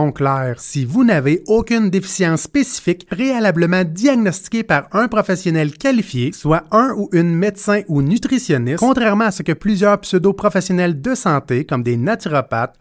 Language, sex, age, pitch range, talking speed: French, male, 30-49, 150-210 Hz, 145 wpm